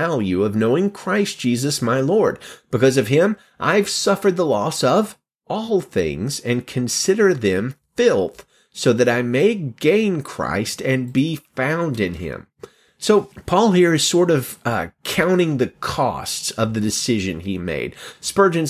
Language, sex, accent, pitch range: English, male, American, 115-160 Hz